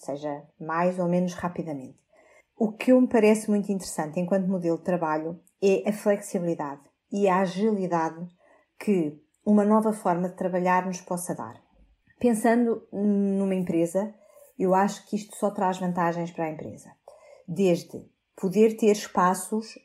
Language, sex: Portuguese, female